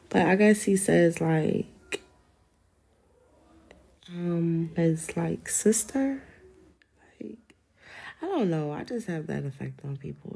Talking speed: 120 wpm